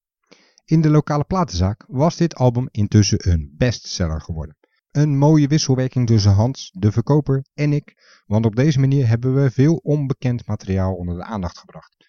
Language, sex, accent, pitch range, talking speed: Dutch, male, Belgian, 100-135 Hz, 165 wpm